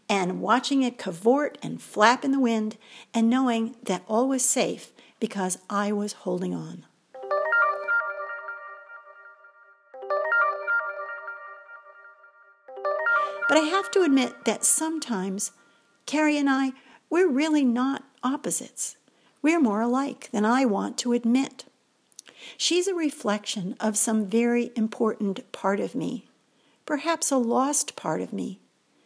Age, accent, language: 50-69, American, English